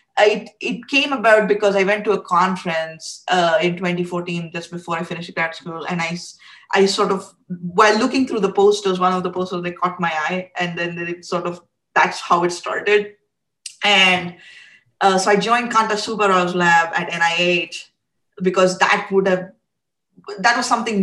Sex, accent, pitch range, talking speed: female, Indian, 170-195 Hz, 175 wpm